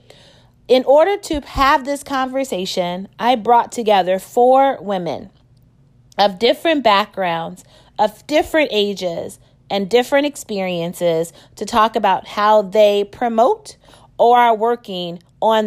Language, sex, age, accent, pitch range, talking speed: English, female, 30-49, American, 185-255 Hz, 115 wpm